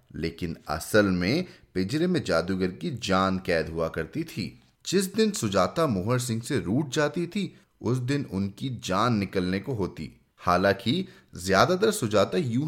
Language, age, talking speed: Hindi, 30-49, 160 wpm